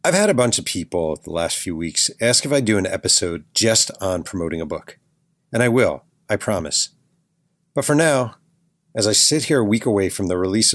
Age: 40-59